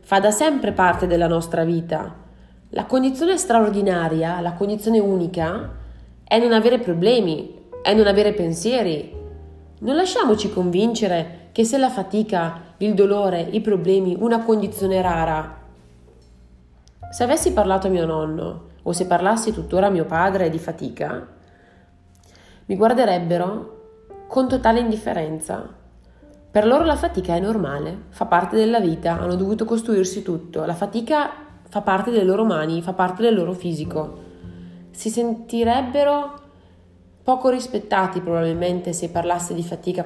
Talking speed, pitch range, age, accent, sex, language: 135 wpm, 160-225 Hz, 30-49, native, female, Italian